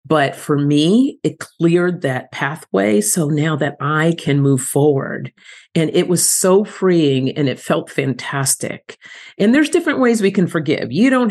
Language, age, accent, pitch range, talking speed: English, 40-59, American, 145-185 Hz, 170 wpm